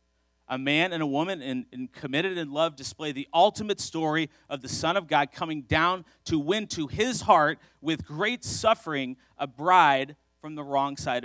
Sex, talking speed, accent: male, 175 wpm, American